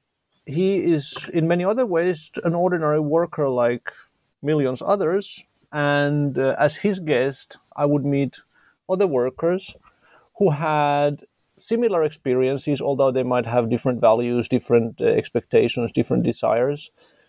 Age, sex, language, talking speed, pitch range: 30-49, male, English, 130 wpm, 130-170 Hz